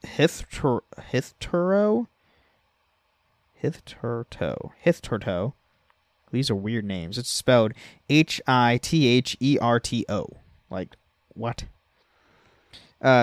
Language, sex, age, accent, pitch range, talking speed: English, male, 20-39, American, 105-145 Hz, 90 wpm